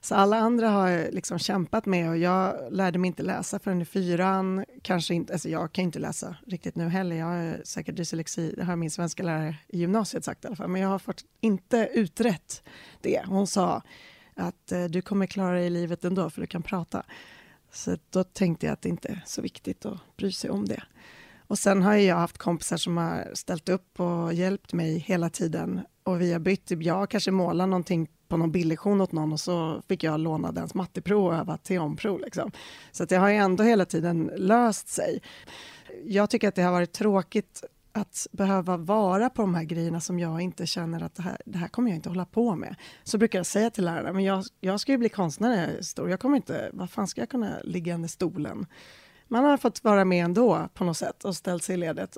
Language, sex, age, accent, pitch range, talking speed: Swedish, female, 30-49, native, 170-200 Hz, 225 wpm